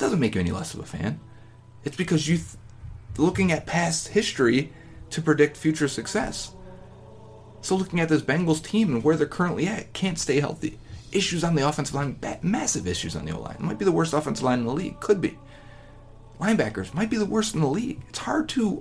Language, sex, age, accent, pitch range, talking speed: English, male, 30-49, American, 110-155 Hz, 205 wpm